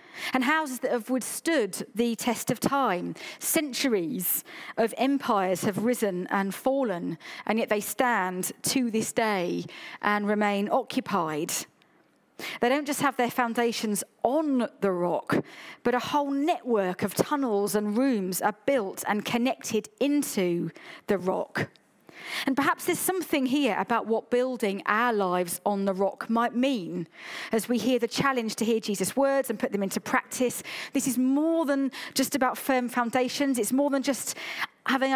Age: 40-59